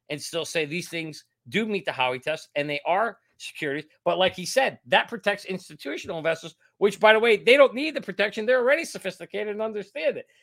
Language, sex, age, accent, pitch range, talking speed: English, male, 40-59, American, 140-200 Hz, 215 wpm